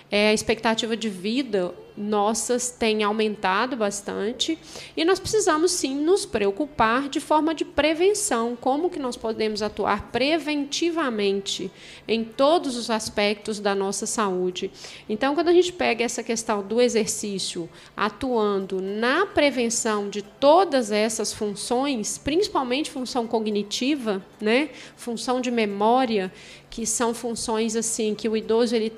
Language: Portuguese